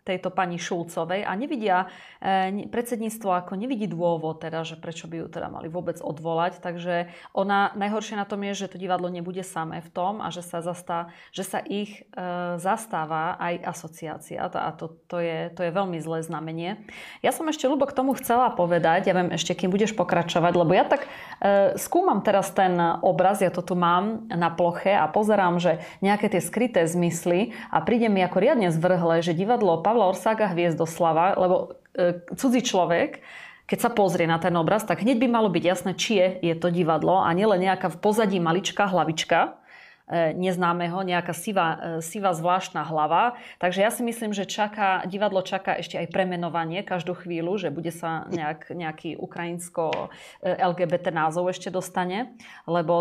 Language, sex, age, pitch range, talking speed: Slovak, female, 30-49, 170-205 Hz, 175 wpm